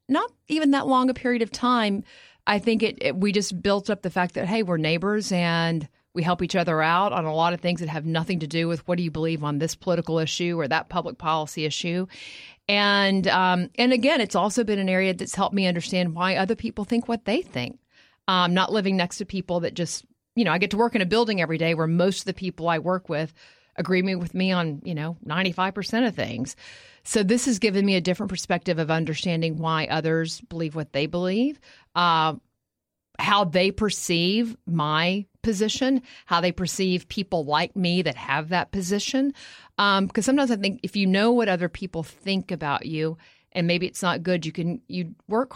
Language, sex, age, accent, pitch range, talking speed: English, female, 40-59, American, 165-205 Hz, 215 wpm